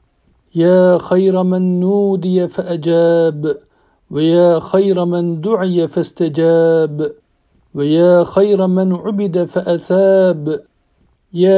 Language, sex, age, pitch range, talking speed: Turkish, male, 50-69, 170-190 Hz, 85 wpm